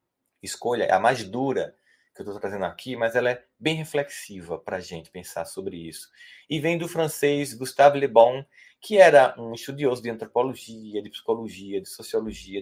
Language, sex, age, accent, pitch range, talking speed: Portuguese, male, 20-39, Brazilian, 115-165 Hz, 175 wpm